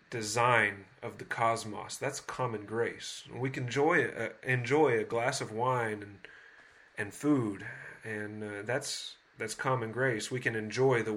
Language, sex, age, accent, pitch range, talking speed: English, male, 30-49, American, 105-130 Hz, 155 wpm